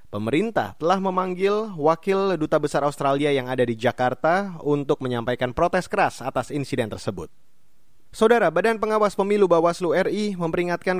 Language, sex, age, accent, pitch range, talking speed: Indonesian, male, 30-49, native, 130-180 Hz, 130 wpm